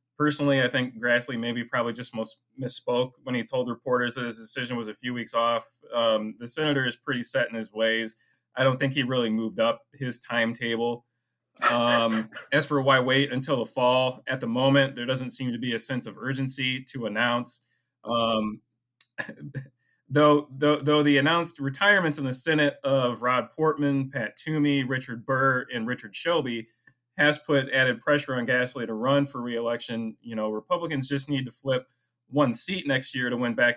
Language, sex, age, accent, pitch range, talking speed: English, male, 20-39, American, 120-140 Hz, 185 wpm